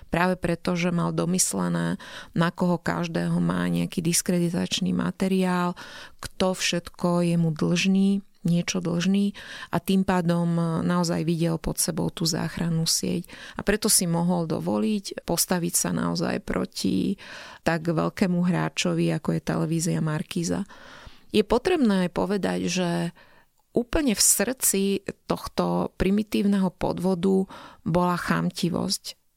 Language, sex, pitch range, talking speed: Slovak, female, 170-195 Hz, 120 wpm